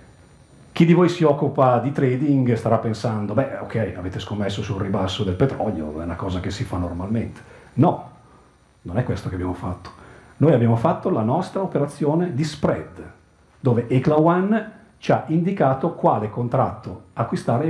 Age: 40-59